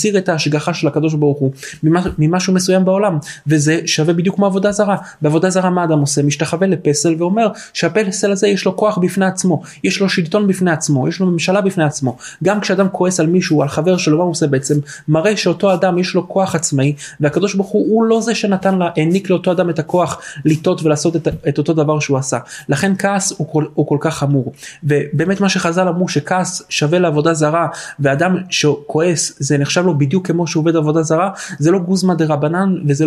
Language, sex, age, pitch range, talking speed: Hebrew, male, 20-39, 150-185 Hz, 160 wpm